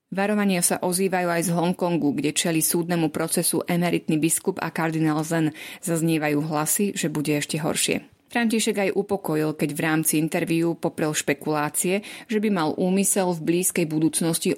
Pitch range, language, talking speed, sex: 155-185 Hz, Slovak, 150 wpm, female